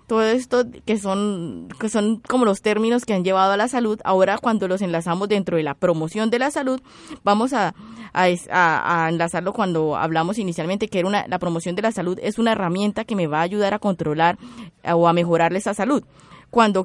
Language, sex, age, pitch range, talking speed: Spanish, female, 20-39, 185-235 Hz, 205 wpm